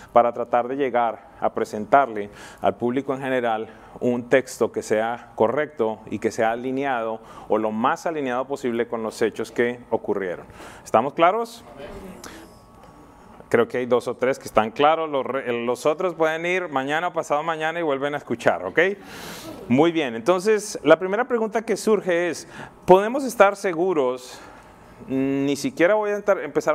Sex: male